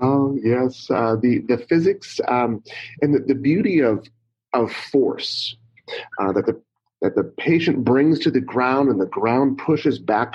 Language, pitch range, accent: English, 115-155 Hz, American